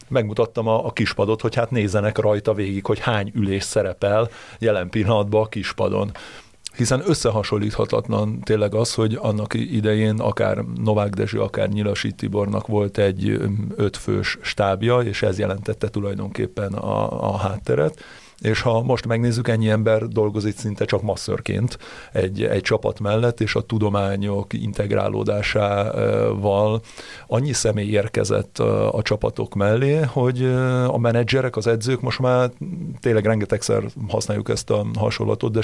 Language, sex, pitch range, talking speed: Hungarian, male, 100-115 Hz, 130 wpm